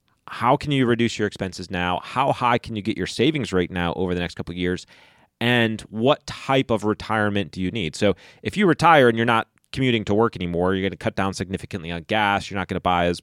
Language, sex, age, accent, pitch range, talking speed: English, male, 30-49, American, 95-125 Hz, 250 wpm